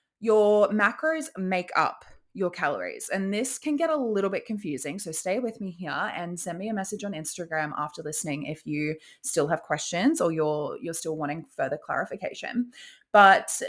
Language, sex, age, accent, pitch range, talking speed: English, female, 20-39, Australian, 165-230 Hz, 180 wpm